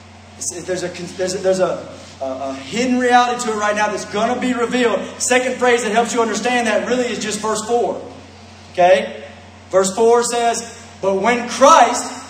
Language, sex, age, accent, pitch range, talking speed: English, male, 30-49, American, 215-280 Hz, 170 wpm